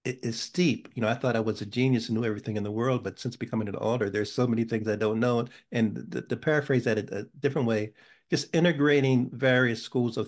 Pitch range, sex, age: 110-130 Hz, male, 50-69